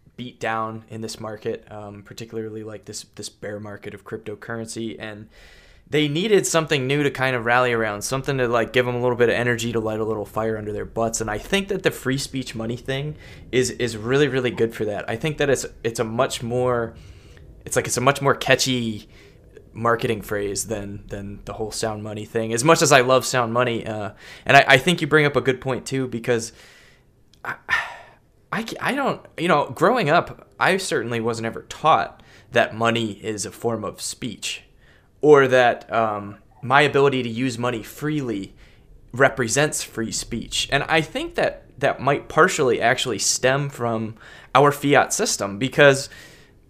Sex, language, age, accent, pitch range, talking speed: male, English, 20-39, American, 110-130 Hz, 190 wpm